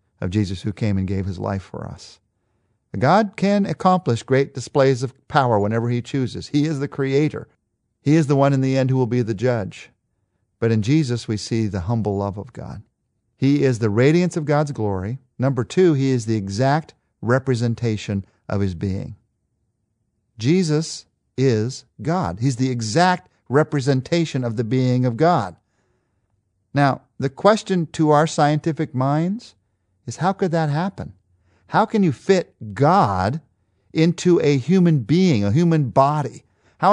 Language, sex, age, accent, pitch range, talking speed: English, male, 50-69, American, 110-150 Hz, 160 wpm